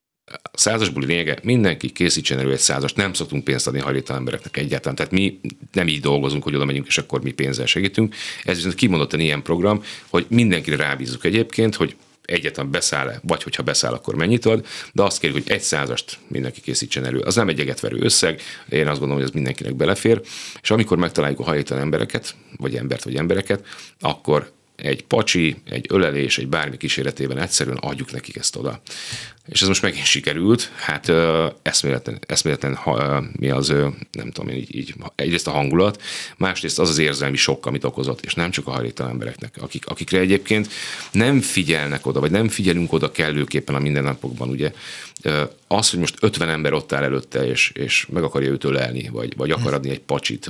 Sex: male